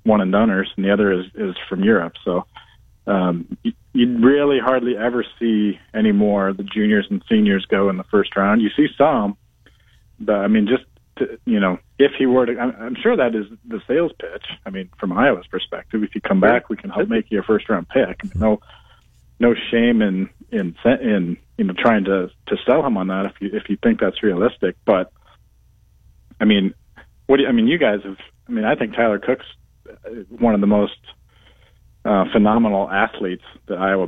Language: English